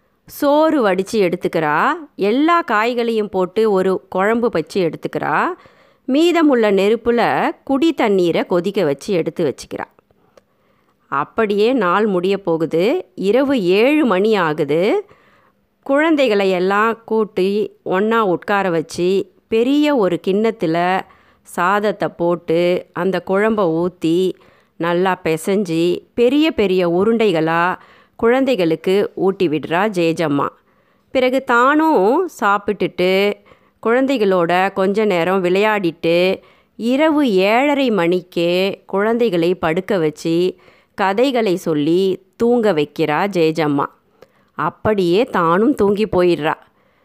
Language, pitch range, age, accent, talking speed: Tamil, 175-235 Hz, 30-49, native, 90 wpm